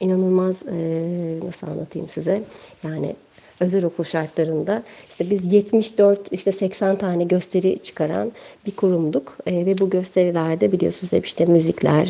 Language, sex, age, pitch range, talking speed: Turkish, female, 40-59, 185-230 Hz, 125 wpm